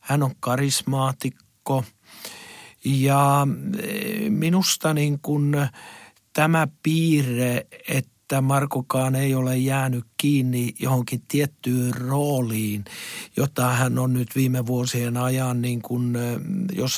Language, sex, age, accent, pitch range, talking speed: Finnish, male, 60-79, native, 125-145 Hz, 100 wpm